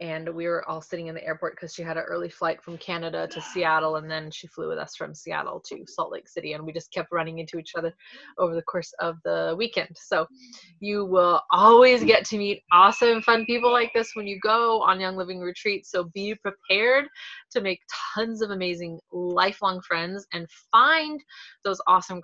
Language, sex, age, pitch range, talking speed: English, female, 20-39, 170-215 Hz, 210 wpm